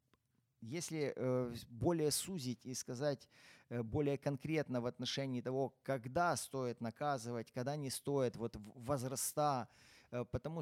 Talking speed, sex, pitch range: 105 wpm, male, 125-145 Hz